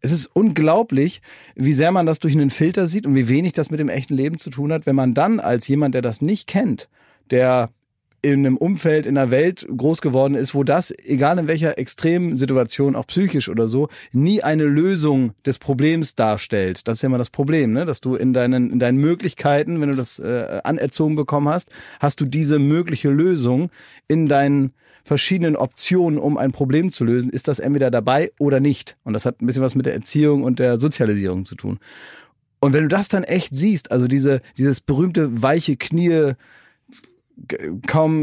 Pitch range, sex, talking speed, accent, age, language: 130-160 Hz, male, 200 wpm, German, 40-59, German